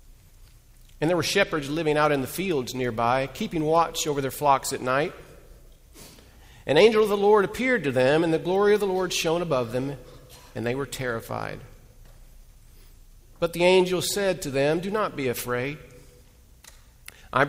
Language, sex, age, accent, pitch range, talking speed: English, male, 50-69, American, 125-160 Hz, 170 wpm